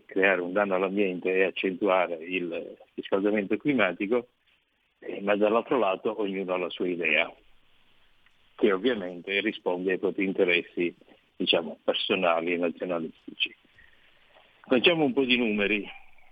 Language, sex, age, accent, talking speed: Italian, male, 50-69, native, 120 wpm